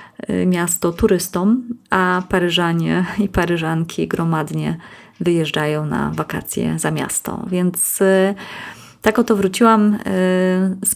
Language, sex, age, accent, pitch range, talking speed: Polish, female, 30-49, native, 180-215 Hz, 95 wpm